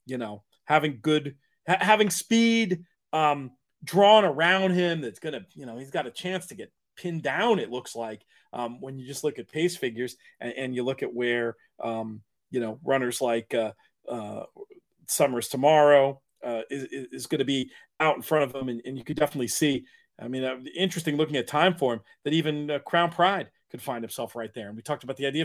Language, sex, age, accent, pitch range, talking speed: English, male, 40-59, American, 135-190 Hz, 225 wpm